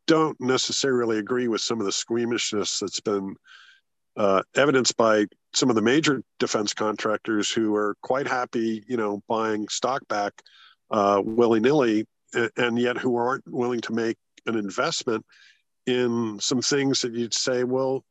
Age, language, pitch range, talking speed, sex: 50-69, English, 110-135 Hz, 150 wpm, male